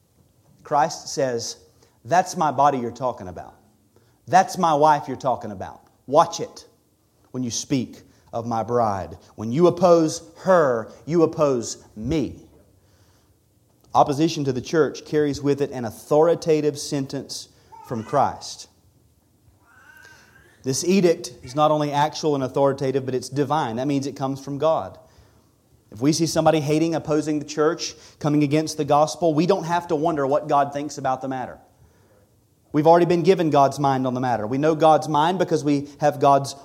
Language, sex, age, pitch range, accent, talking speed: English, male, 30-49, 115-155 Hz, American, 160 wpm